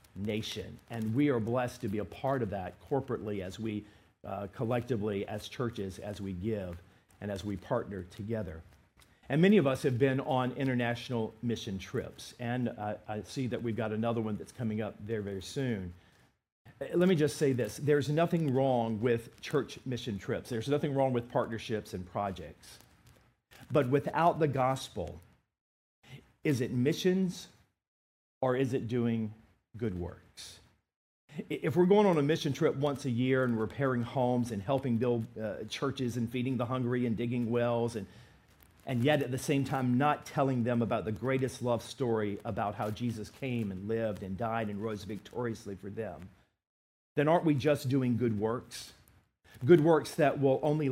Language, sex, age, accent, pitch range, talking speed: English, male, 50-69, American, 105-135 Hz, 175 wpm